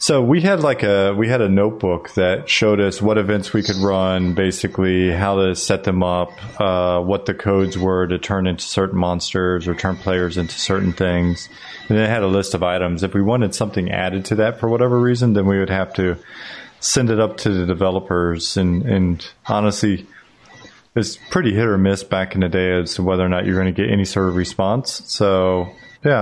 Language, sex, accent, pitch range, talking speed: English, male, American, 95-115 Hz, 215 wpm